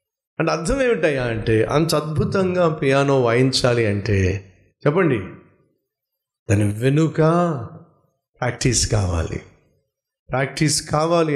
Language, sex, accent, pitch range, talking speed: Telugu, male, native, 120-190 Hz, 85 wpm